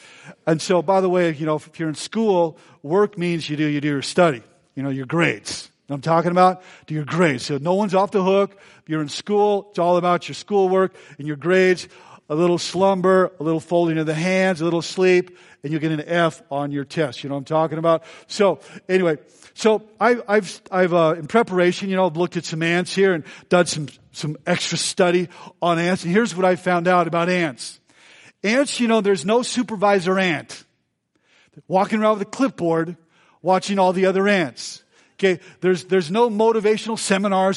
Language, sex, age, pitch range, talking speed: English, male, 50-69, 165-195 Hz, 210 wpm